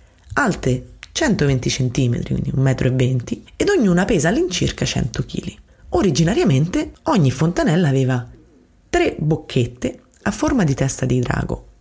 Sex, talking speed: female, 120 wpm